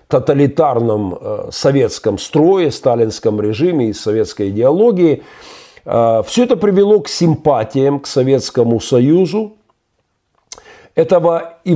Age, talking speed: 50-69, 90 wpm